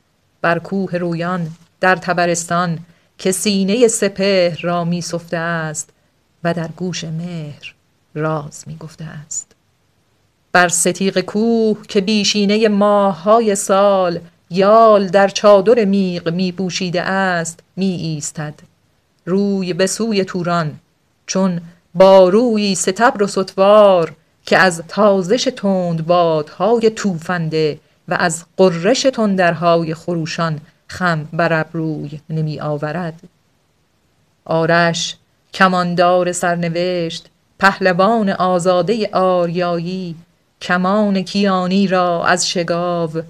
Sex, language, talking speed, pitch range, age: female, Persian, 95 wpm, 165-190 Hz, 40-59